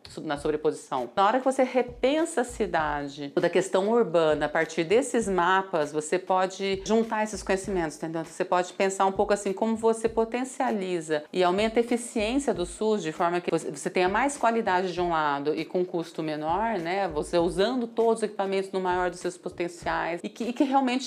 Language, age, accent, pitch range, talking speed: Portuguese, 30-49, Brazilian, 180-230 Hz, 195 wpm